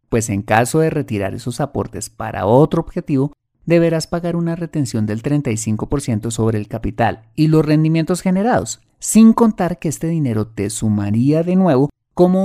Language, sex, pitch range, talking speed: Spanish, male, 110-165 Hz, 160 wpm